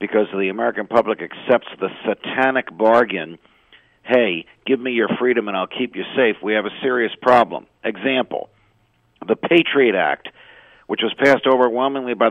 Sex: male